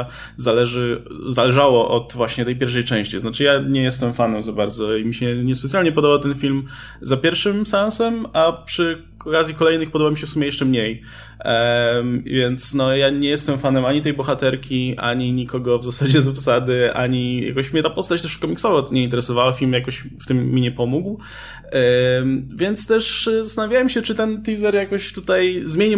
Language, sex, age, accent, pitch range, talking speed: Polish, male, 20-39, native, 125-170 Hz, 180 wpm